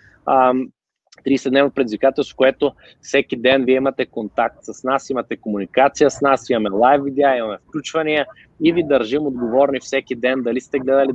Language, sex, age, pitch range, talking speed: Bulgarian, male, 20-39, 125-150 Hz, 160 wpm